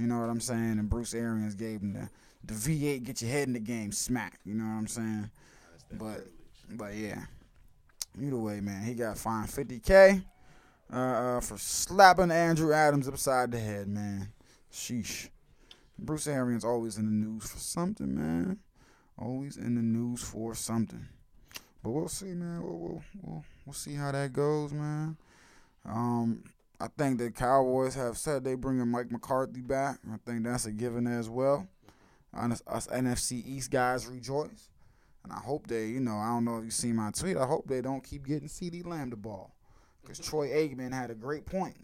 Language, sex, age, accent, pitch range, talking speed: English, male, 20-39, American, 115-150 Hz, 185 wpm